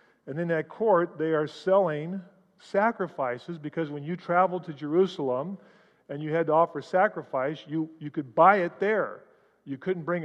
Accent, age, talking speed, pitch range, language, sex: American, 40-59, 170 wpm, 145-180 Hz, English, male